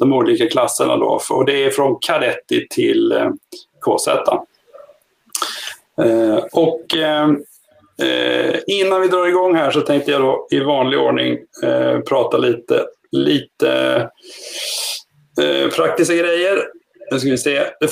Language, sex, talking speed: Swedish, male, 100 wpm